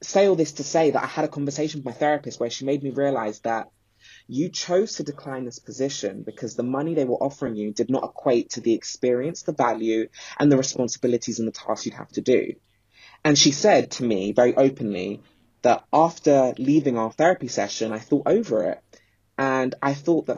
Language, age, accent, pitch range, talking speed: English, 20-39, British, 120-150 Hz, 210 wpm